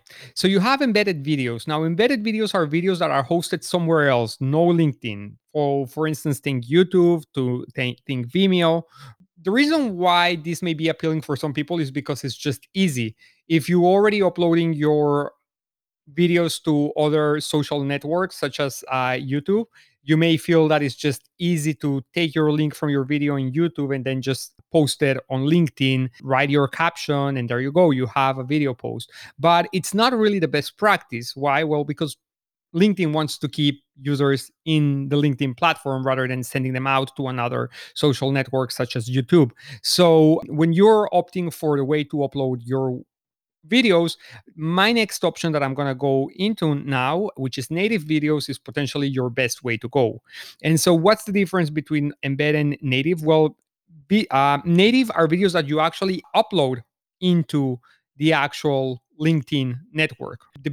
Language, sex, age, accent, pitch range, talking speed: English, male, 30-49, Mexican, 135-170 Hz, 170 wpm